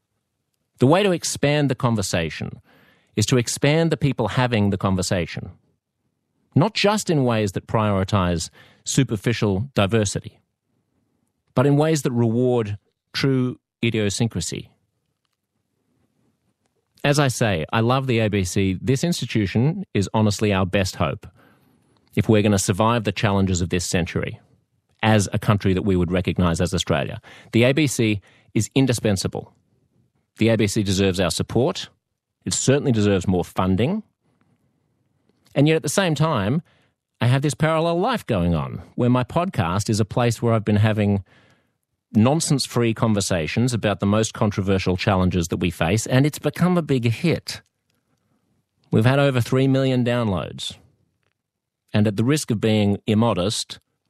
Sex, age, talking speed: male, 40-59, 140 wpm